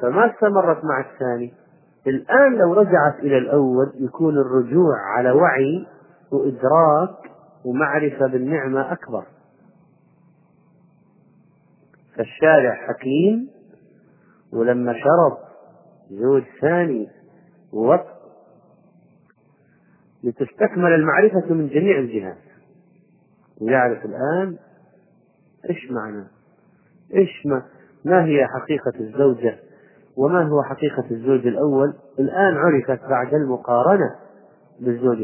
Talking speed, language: 80 wpm, Arabic